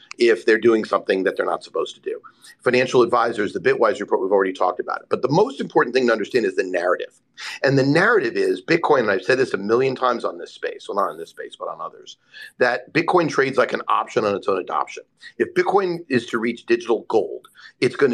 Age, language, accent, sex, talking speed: 40-59, English, American, male, 240 wpm